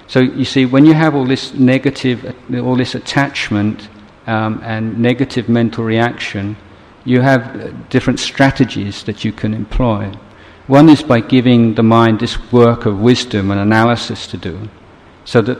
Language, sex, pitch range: Thai, male, 100-120 Hz